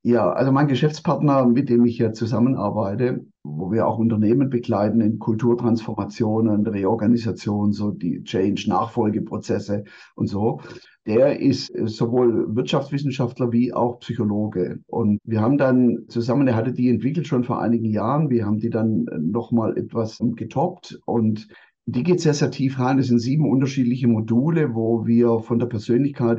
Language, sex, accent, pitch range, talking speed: German, male, German, 115-135 Hz, 150 wpm